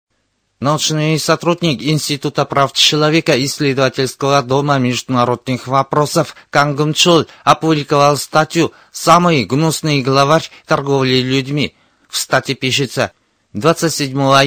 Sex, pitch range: male, 135-155 Hz